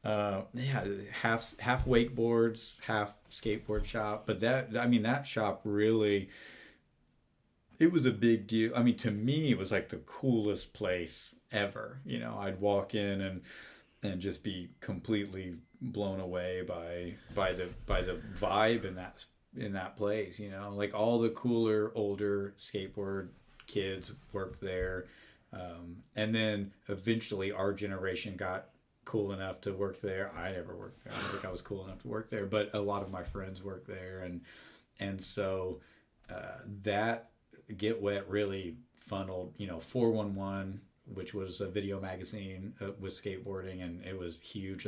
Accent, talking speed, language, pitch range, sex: American, 165 wpm, English, 95-110 Hz, male